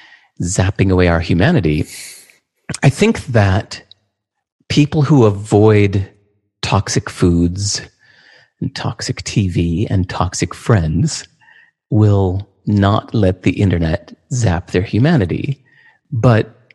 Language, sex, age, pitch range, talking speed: English, male, 40-59, 90-125 Hz, 95 wpm